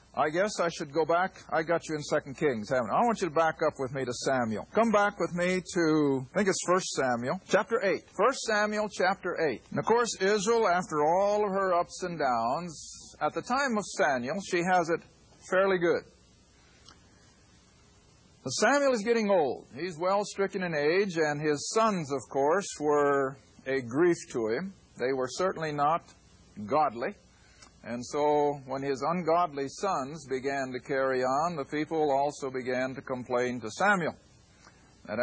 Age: 50-69